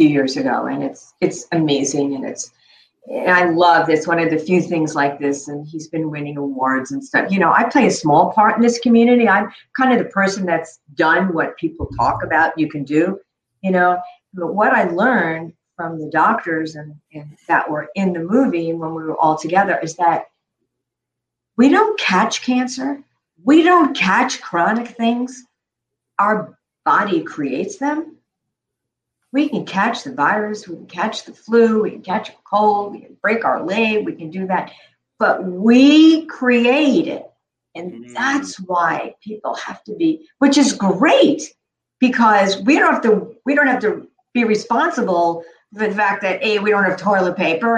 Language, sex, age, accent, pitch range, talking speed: English, female, 50-69, American, 165-240 Hz, 180 wpm